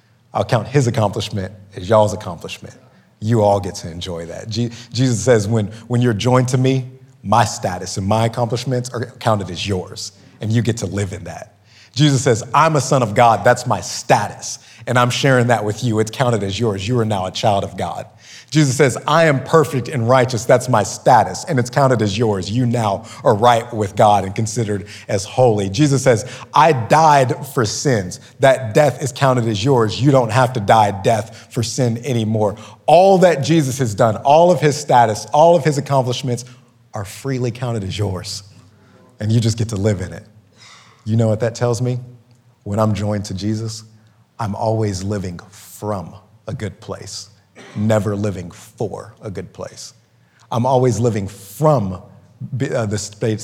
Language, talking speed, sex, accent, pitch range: English, 185 wpm, male, American, 105-125 Hz